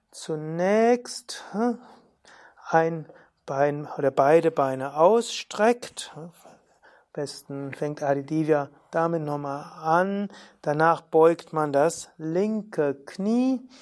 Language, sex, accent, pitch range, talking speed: German, male, German, 155-205 Hz, 85 wpm